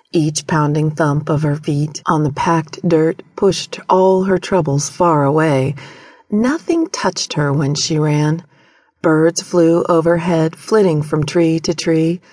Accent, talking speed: American, 145 wpm